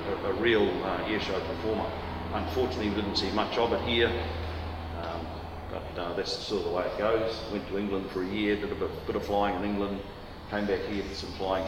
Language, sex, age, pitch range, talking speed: English, male, 40-59, 90-110 Hz, 225 wpm